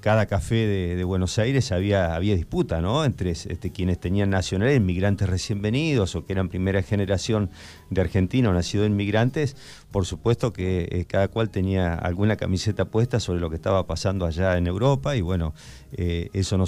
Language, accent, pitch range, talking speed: Spanish, Argentinian, 85-105 Hz, 180 wpm